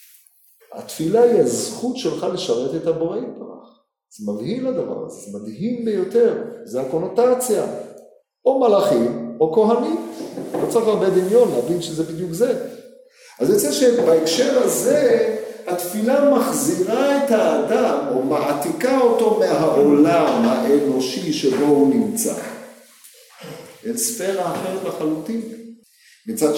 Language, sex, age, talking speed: Hebrew, male, 40-59, 115 wpm